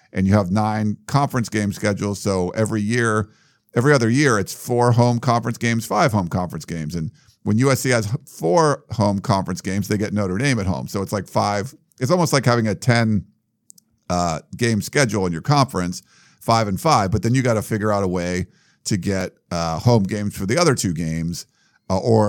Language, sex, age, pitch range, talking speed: English, male, 50-69, 100-130 Hz, 205 wpm